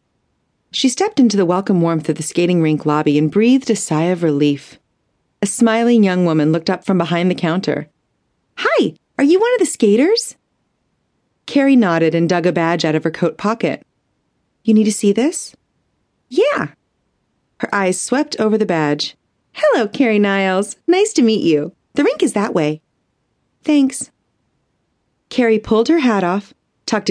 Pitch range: 170-235 Hz